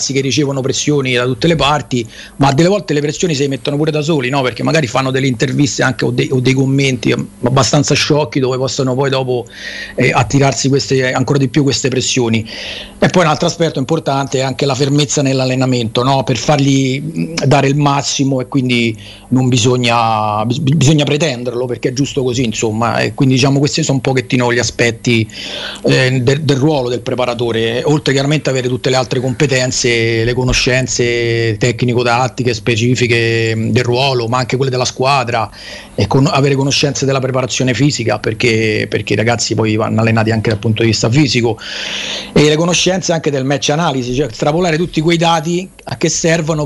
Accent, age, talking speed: native, 40-59, 180 wpm